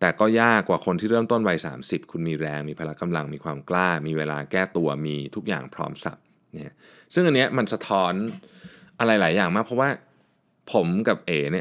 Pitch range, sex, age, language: 75-105 Hz, male, 20-39, Thai